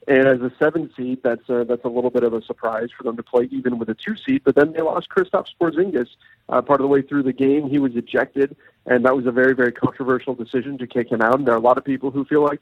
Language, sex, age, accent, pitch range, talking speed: English, male, 40-59, American, 120-145 Hz, 280 wpm